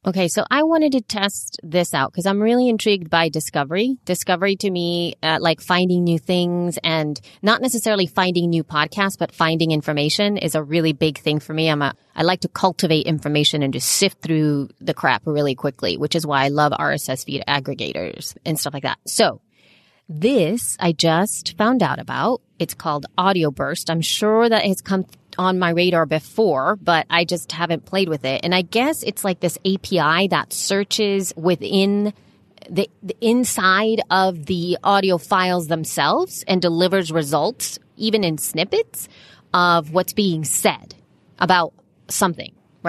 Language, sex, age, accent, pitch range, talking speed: English, female, 30-49, American, 165-200 Hz, 170 wpm